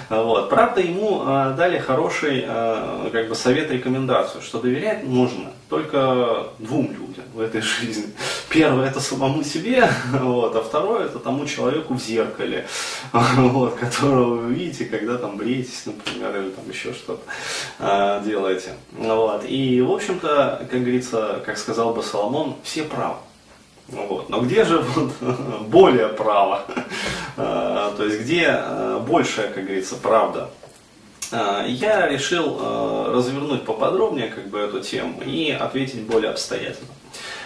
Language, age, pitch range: Russian, 20-39, 110-135 Hz